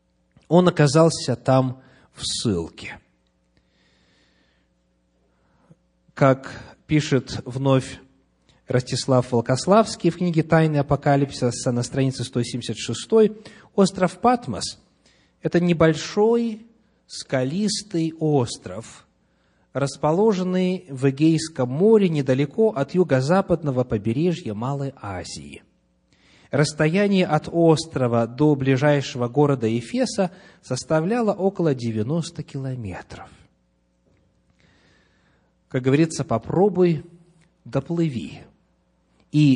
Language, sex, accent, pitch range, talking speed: Russian, male, native, 105-170 Hz, 75 wpm